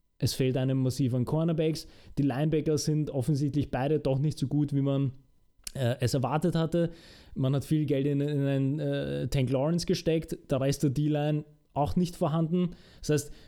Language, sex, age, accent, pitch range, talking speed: German, male, 20-39, Austrian, 135-160 Hz, 185 wpm